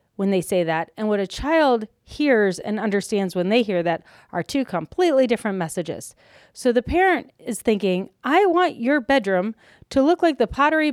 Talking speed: 185 wpm